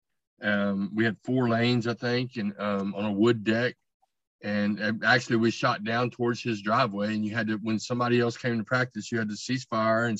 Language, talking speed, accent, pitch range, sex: English, 225 wpm, American, 105-125 Hz, male